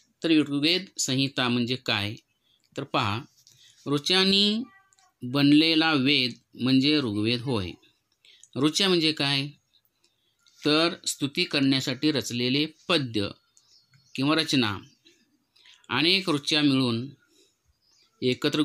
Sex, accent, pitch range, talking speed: male, native, 125-165 Hz, 85 wpm